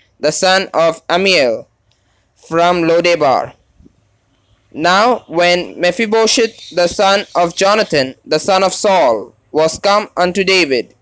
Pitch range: 140-190 Hz